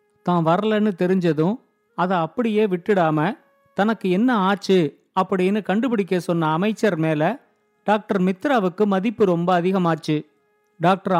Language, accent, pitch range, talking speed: Tamil, native, 175-225 Hz, 105 wpm